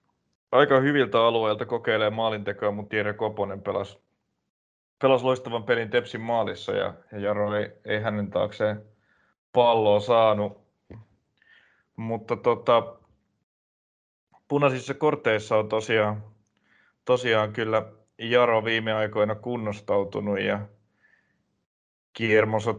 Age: 30-49